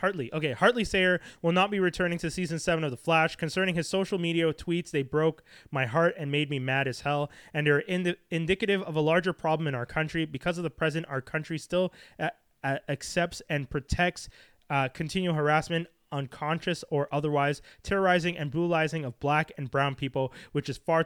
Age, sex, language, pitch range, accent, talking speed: 20-39, male, English, 145-180 Hz, American, 200 wpm